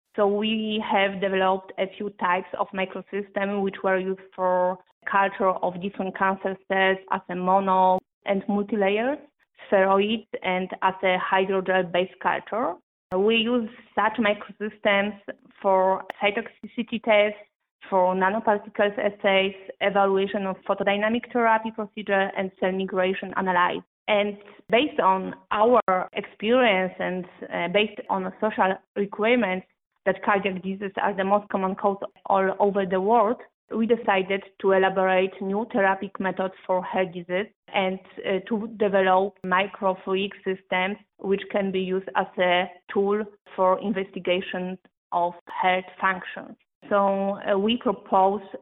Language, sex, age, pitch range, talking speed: English, female, 20-39, 185-205 Hz, 125 wpm